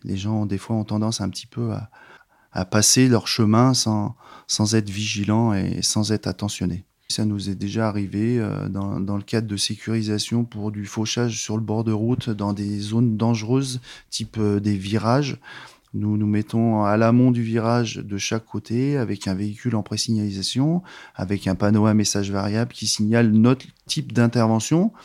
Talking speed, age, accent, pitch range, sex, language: 180 wpm, 30-49, French, 105-120 Hz, male, French